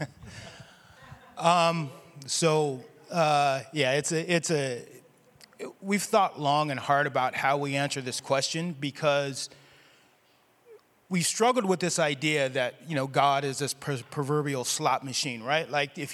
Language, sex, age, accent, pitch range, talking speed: English, male, 30-49, American, 140-190 Hz, 140 wpm